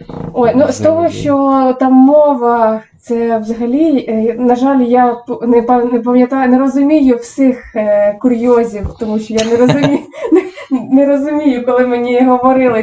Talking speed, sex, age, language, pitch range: 125 wpm, female, 20-39, Ukrainian, 210-255 Hz